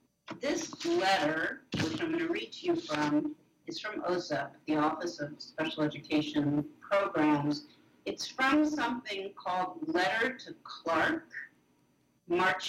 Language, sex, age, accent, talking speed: English, female, 50-69, American, 130 wpm